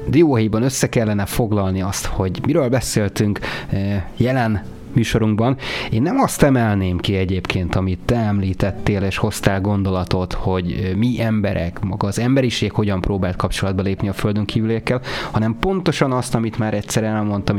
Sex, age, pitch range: male, 30-49, 95-120 Hz